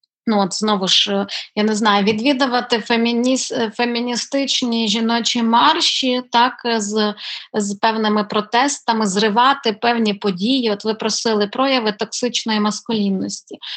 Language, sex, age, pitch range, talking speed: Ukrainian, female, 30-49, 215-245 Hz, 110 wpm